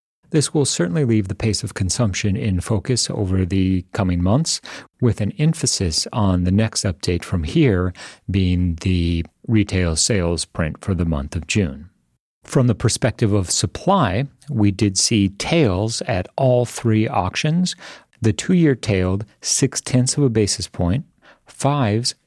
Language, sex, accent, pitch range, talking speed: English, male, American, 95-125 Hz, 150 wpm